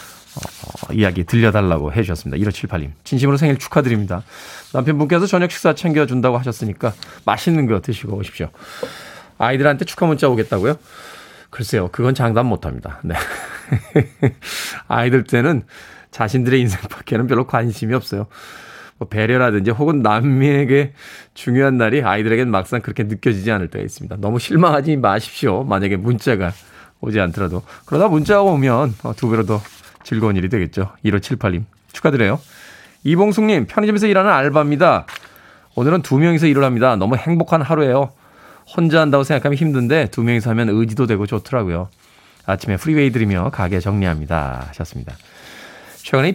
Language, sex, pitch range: Korean, male, 105-150 Hz